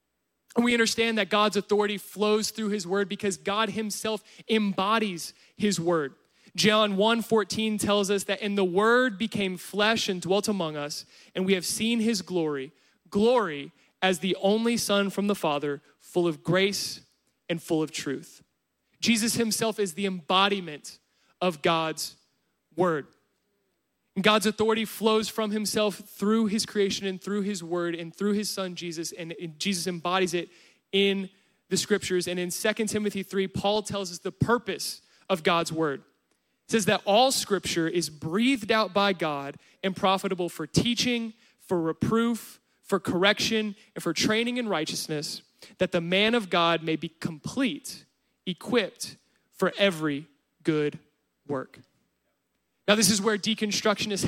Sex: male